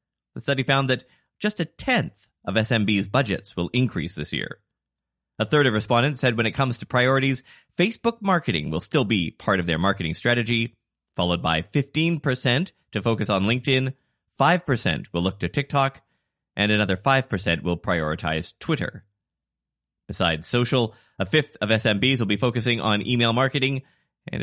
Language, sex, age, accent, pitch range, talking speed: English, male, 30-49, American, 90-135 Hz, 160 wpm